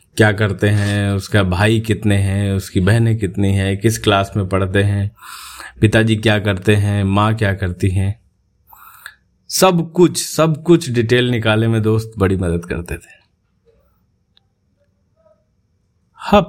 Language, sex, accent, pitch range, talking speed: Hindi, male, native, 100-125 Hz, 135 wpm